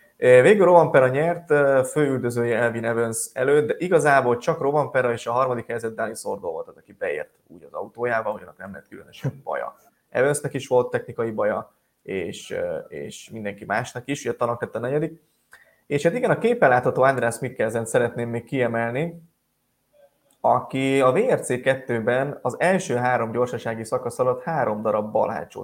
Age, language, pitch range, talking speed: 20-39, Hungarian, 120-180 Hz, 155 wpm